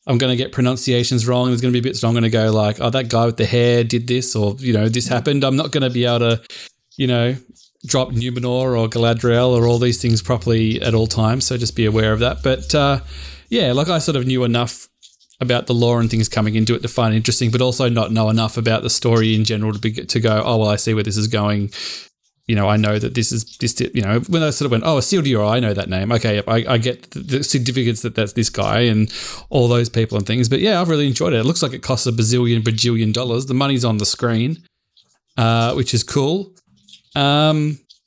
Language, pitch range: English, 115-130 Hz